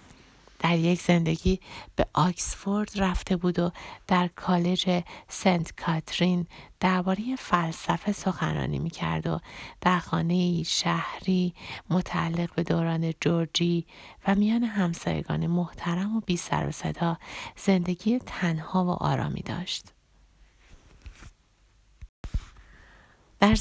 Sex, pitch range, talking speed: female, 165-190 Hz, 95 wpm